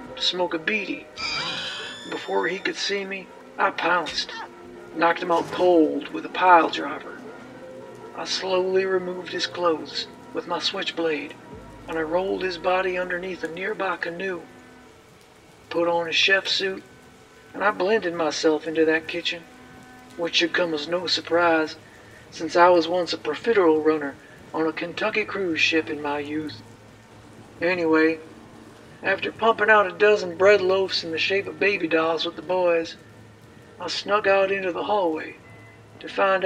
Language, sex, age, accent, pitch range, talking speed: English, male, 60-79, American, 155-185 Hz, 155 wpm